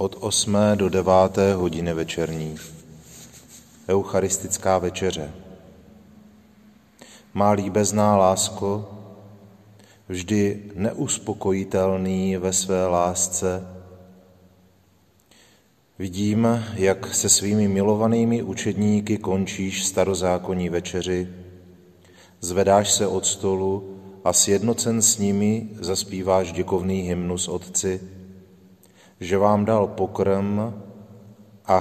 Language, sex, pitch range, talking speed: Czech, male, 90-100 Hz, 80 wpm